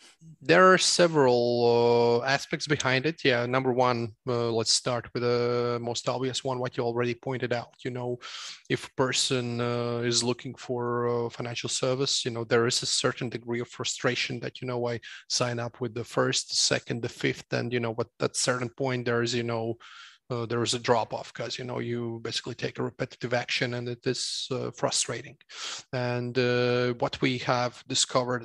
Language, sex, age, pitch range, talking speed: English, male, 30-49, 120-130 Hz, 190 wpm